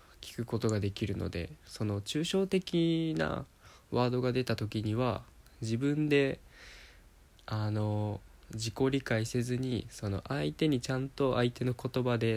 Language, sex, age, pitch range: Japanese, male, 20-39, 100-130 Hz